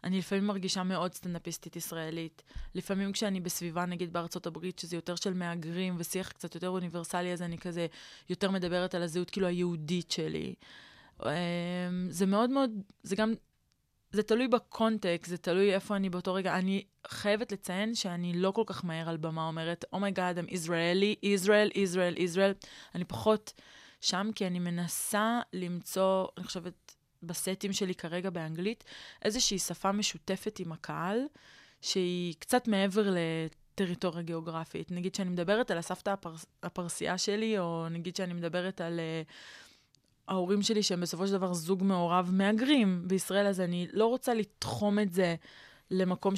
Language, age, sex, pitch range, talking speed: Hebrew, 20-39, female, 175-200 Hz, 155 wpm